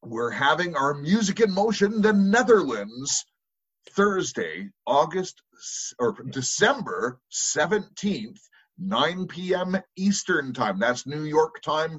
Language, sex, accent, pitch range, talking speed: English, male, American, 130-195 Hz, 110 wpm